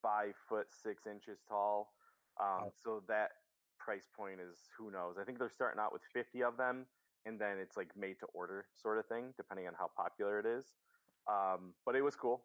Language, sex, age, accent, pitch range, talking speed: English, male, 30-49, American, 105-135 Hz, 200 wpm